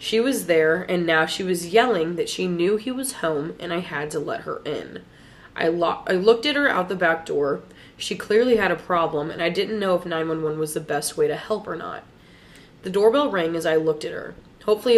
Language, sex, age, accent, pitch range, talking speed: English, female, 20-39, American, 160-220 Hz, 235 wpm